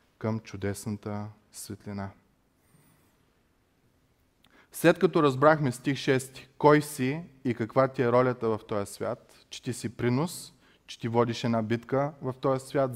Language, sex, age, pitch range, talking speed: Bulgarian, male, 30-49, 120-145 Hz, 140 wpm